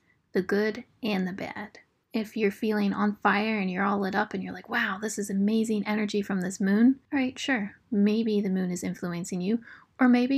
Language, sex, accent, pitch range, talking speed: English, female, American, 190-225 Hz, 210 wpm